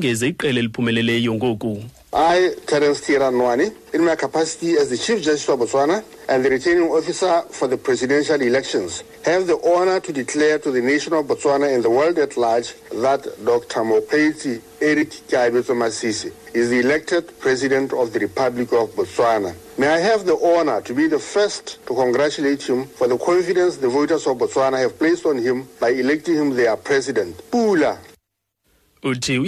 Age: 60-79